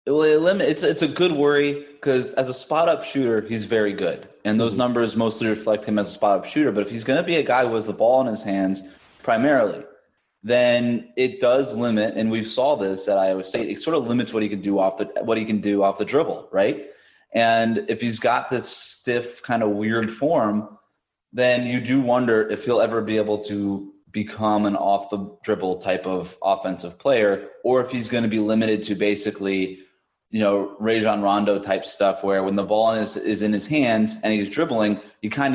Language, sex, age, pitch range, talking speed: English, male, 20-39, 100-120 Hz, 220 wpm